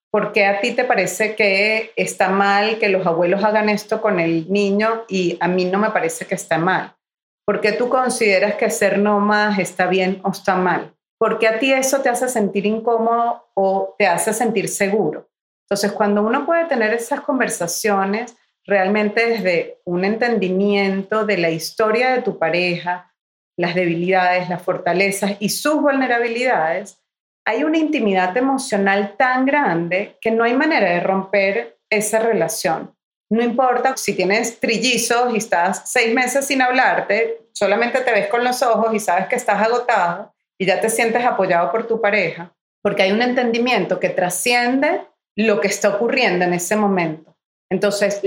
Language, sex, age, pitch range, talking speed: Spanish, female, 40-59, 190-240 Hz, 165 wpm